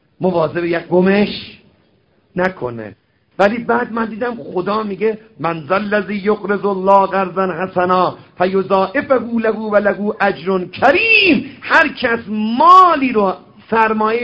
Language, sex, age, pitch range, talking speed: Persian, male, 50-69, 130-220 Hz, 115 wpm